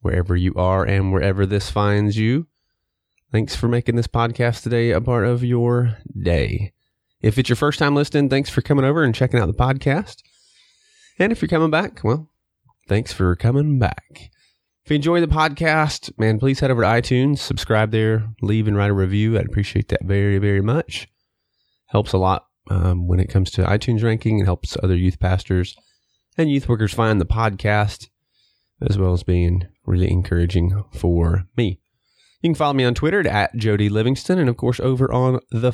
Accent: American